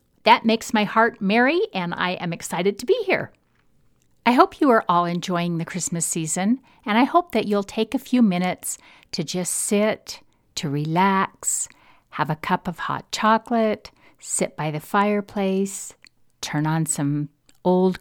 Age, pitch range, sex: 50-69, 165-220 Hz, female